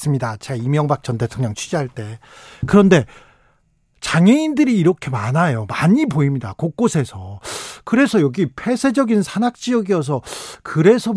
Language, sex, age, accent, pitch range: Korean, male, 40-59, native, 145-205 Hz